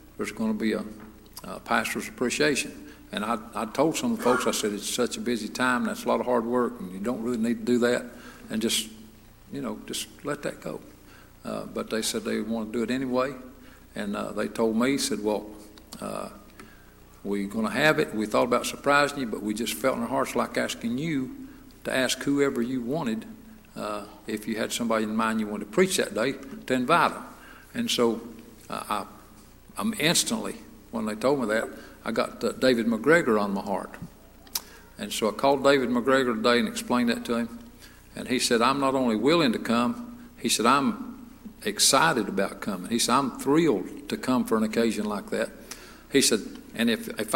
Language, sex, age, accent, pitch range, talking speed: English, male, 60-79, American, 110-145 Hz, 210 wpm